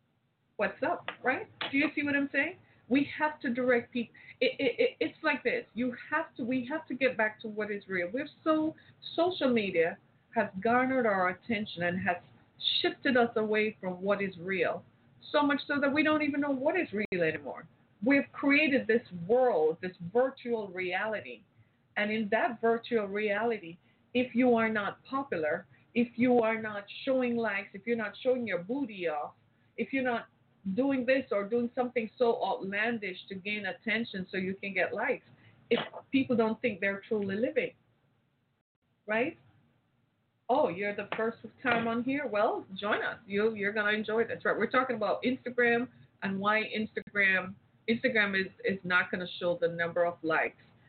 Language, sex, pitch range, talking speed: English, female, 190-255 Hz, 180 wpm